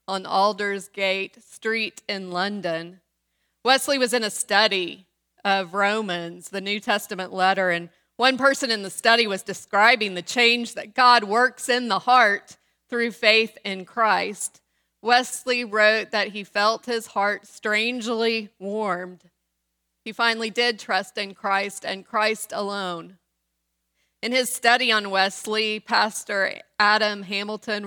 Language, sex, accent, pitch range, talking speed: English, female, American, 170-230 Hz, 135 wpm